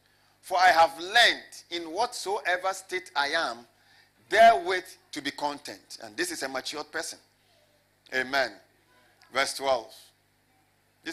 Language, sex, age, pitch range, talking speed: English, male, 50-69, 140-235 Hz, 125 wpm